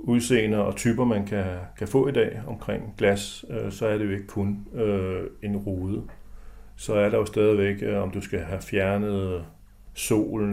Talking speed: 190 wpm